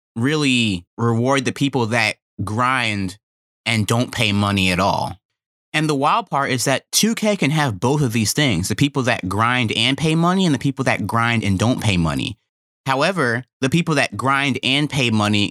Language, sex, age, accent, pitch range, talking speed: English, male, 30-49, American, 100-140 Hz, 190 wpm